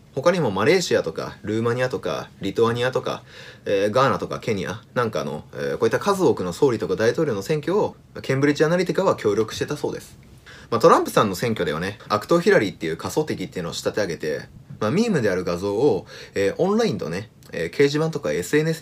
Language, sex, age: Japanese, male, 30-49